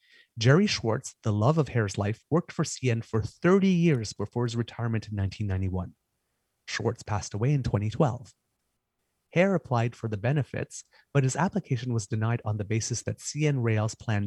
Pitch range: 105-130 Hz